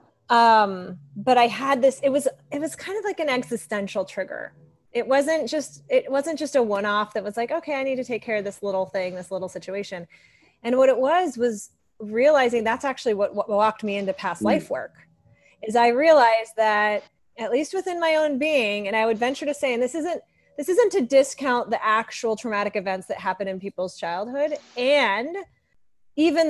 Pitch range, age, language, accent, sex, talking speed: 200-275 Hz, 20-39, English, American, female, 200 wpm